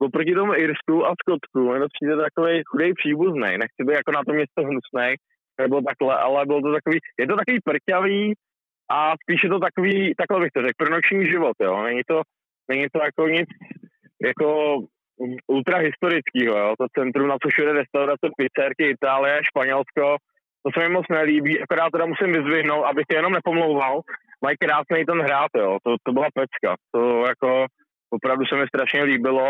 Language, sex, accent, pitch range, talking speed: Czech, male, native, 130-165 Hz, 175 wpm